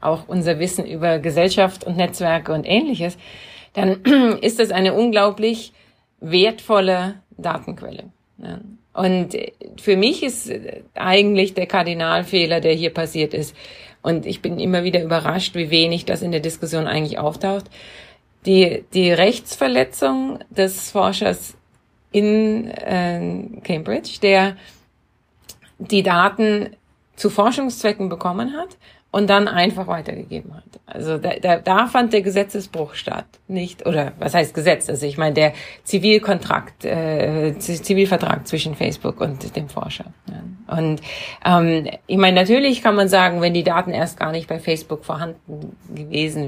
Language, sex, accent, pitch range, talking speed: German, female, German, 165-205 Hz, 135 wpm